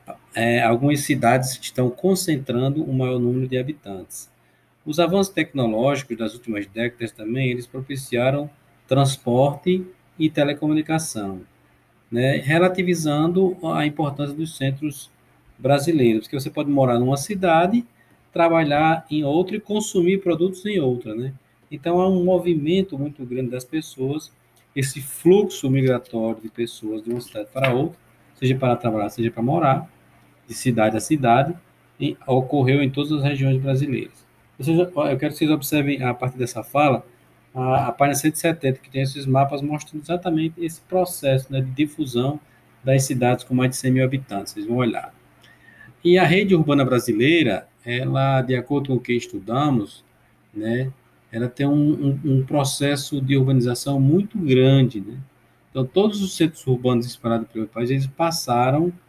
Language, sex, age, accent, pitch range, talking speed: Portuguese, male, 20-39, Brazilian, 125-155 Hz, 150 wpm